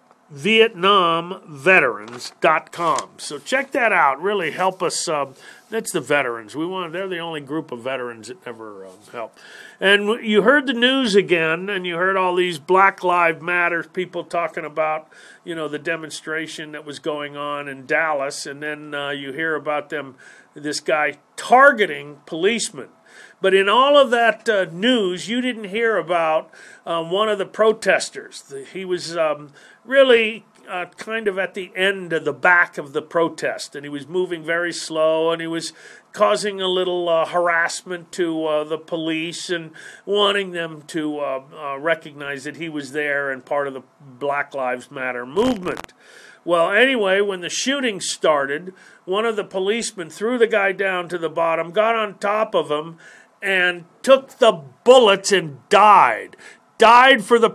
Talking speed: 170 wpm